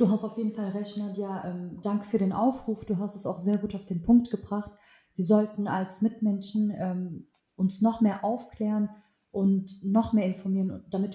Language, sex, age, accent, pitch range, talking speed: German, female, 30-49, German, 185-215 Hz, 185 wpm